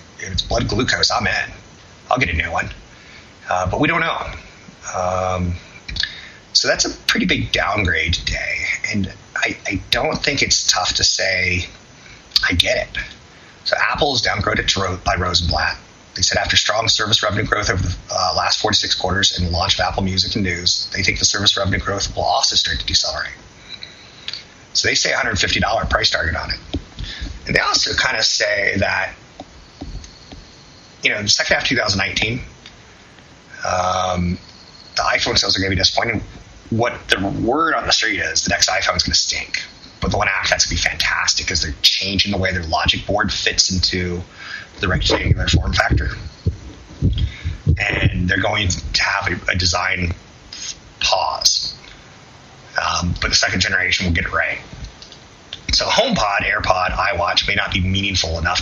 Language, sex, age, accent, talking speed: English, male, 30-49, American, 175 wpm